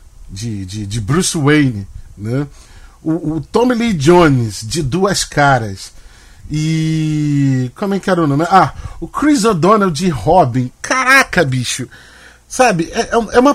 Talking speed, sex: 145 wpm, male